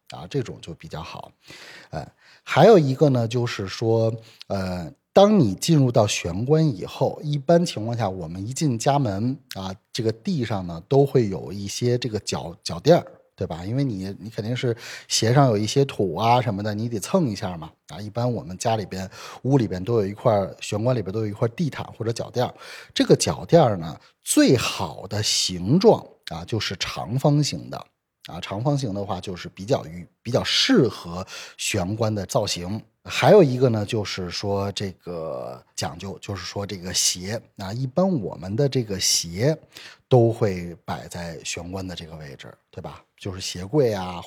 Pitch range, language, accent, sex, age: 95-140 Hz, Chinese, native, male, 30-49